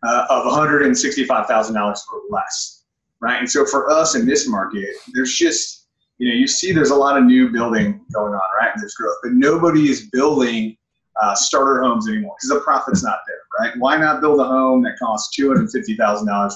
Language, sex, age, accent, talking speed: English, male, 30-49, American, 185 wpm